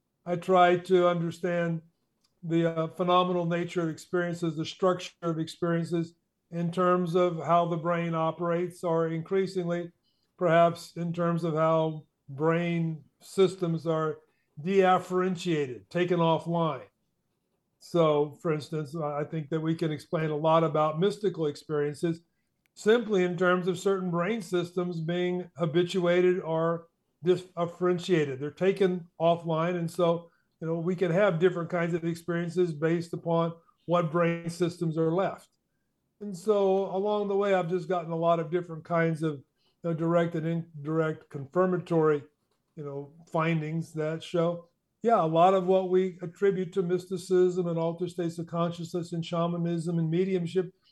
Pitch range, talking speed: 165-180 Hz, 145 wpm